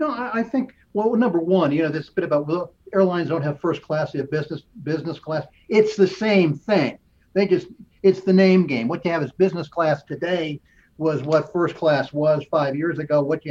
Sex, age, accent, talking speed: male, 50-69, American, 220 wpm